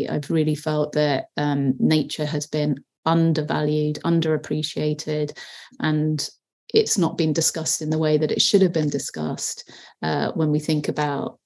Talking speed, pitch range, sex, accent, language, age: 150 wpm, 155-170 Hz, female, British, English, 30-49